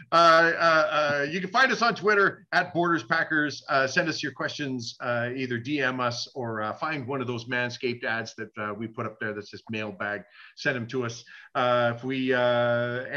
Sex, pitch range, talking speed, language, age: male, 125-160 Hz, 210 wpm, English, 40-59